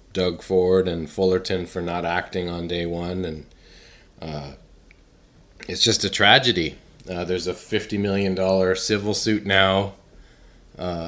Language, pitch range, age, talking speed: English, 85-100 Hz, 30-49, 140 wpm